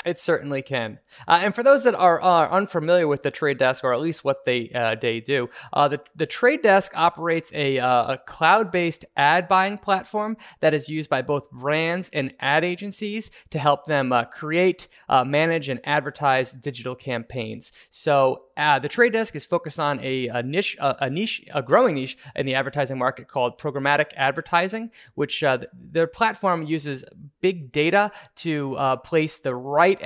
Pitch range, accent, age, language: 135-185 Hz, American, 20-39, English